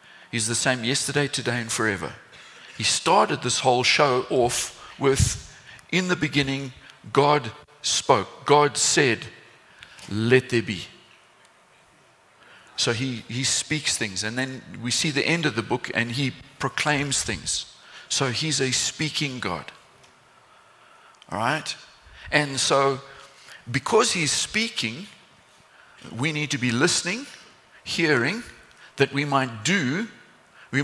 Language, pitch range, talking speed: English, 120-150 Hz, 125 wpm